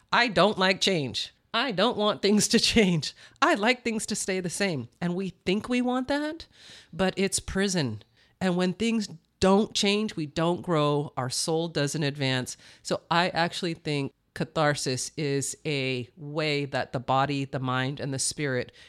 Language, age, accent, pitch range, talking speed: English, 40-59, American, 145-215 Hz, 170 wpm